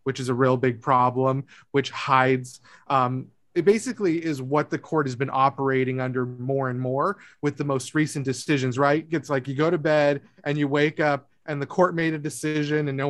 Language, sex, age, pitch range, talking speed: English, male, 30-49, 135-160 Hz, 210 wpm